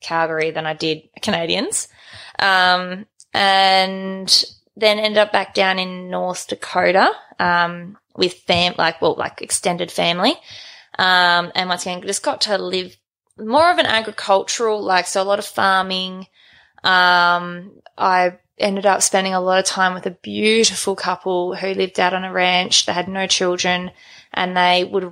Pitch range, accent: 170-190 Hz, Australian